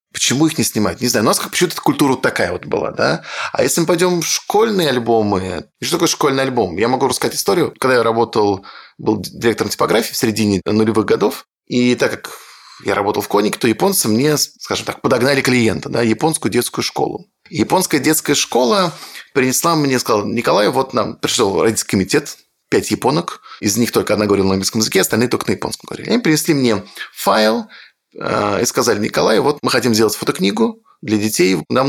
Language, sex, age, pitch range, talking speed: Russian, male, 20-39, 110-155 Hz, 195 wpm